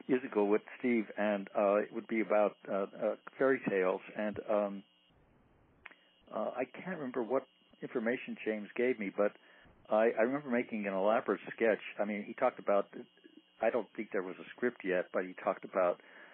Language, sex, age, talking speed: English, male, 60-79, 175 wpm